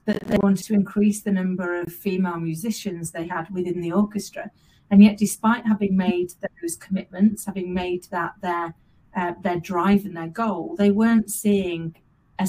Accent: British